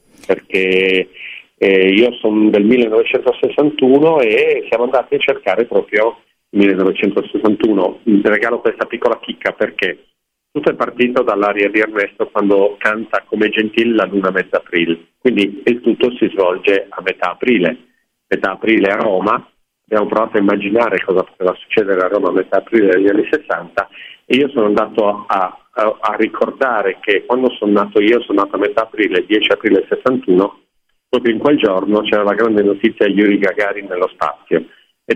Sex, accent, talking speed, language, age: male, native, 165 wpm, Italian, 40-59